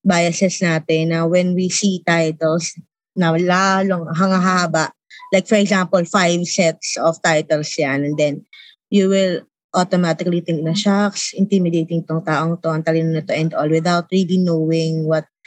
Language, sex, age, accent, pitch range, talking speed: English, female, 20-39, Filipino, 170-210 Hz, 155 wpm